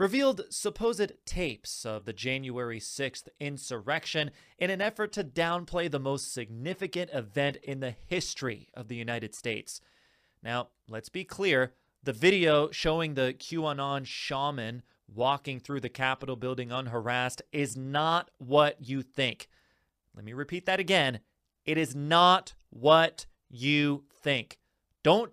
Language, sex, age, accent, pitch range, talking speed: English, male, 30-49, American, 130-180 Hz, 135 wpm